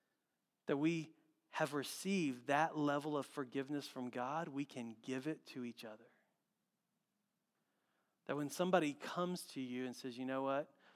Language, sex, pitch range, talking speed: English, male, 135-190 Hz, 155 wpm